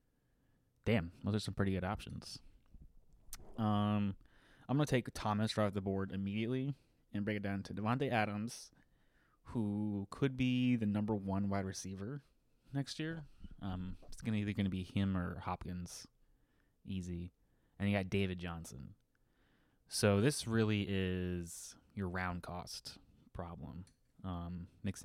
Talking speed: 140 wpm